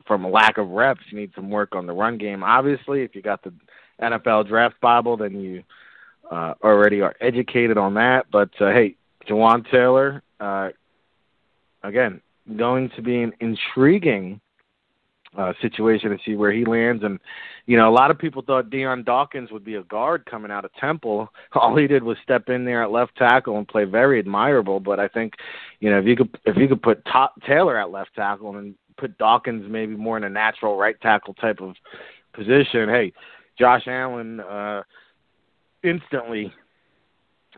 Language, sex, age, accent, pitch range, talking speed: English, male, 40-59, American, 105-125 Hz, 180 wpm